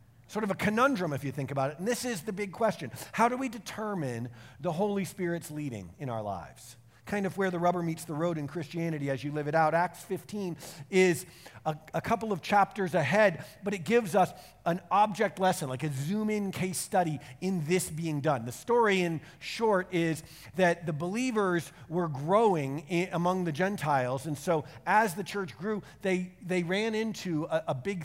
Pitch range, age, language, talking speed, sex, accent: 145-190 Hz, 50-69, English, 195 wpm, male, American